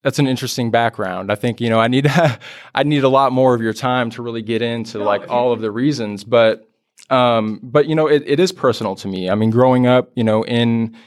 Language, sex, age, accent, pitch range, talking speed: English, male, 20-39, American, 110-130 Hz, 245 wpm